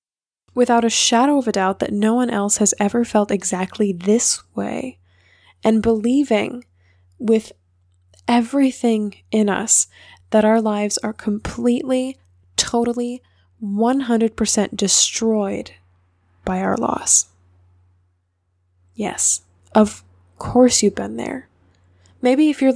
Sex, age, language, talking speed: female, 10-29, English, 110 wpm